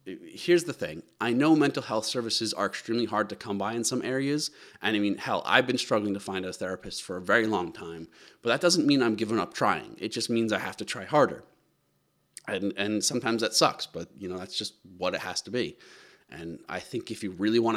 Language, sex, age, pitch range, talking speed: English, male, 30-49, 105-125 Hz, 240 wpm